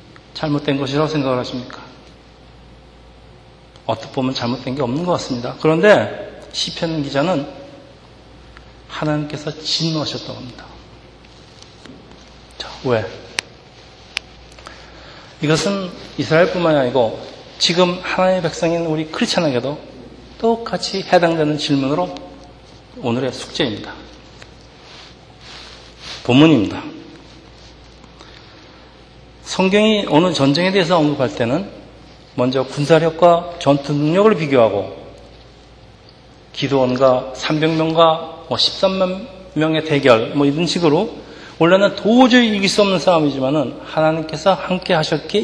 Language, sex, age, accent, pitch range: Korean, male, 40-59, native, 140-180 Hz